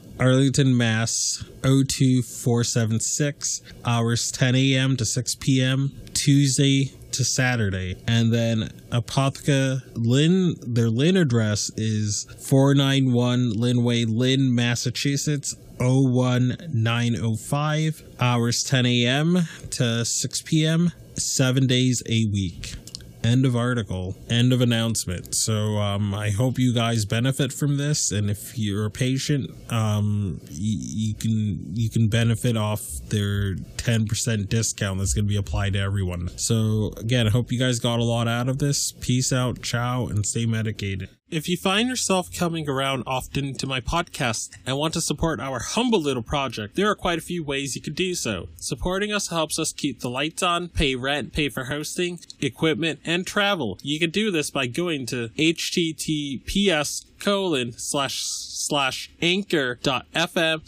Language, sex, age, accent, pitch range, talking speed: English, male, 20-39, American, 115-145 Hz, 140 wpm